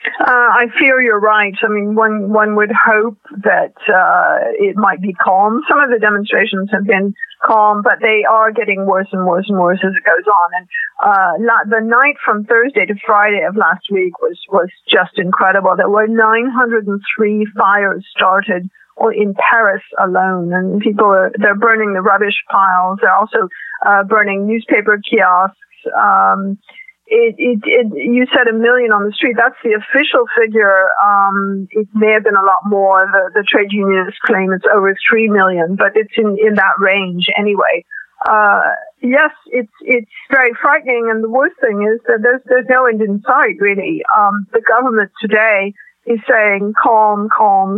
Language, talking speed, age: English, 175 wpm, 50-69